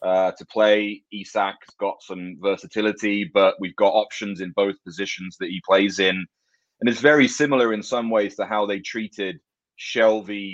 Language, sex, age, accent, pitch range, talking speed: English, male, 30-49, British, 90-105 Hz, 170 wpm